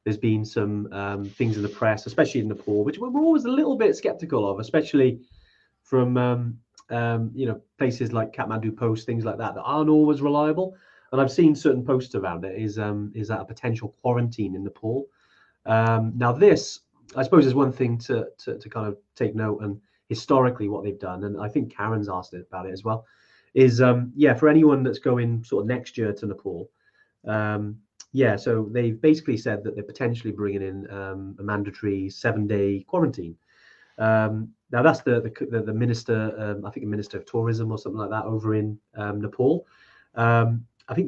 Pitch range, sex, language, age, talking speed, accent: 105-135 Hz, male, English, 30-49, 200 wpm, British